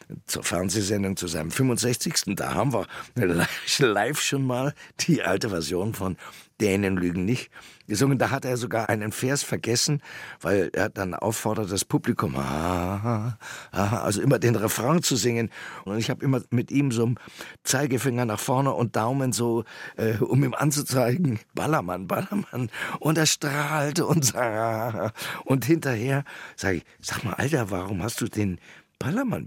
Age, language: 60-79, German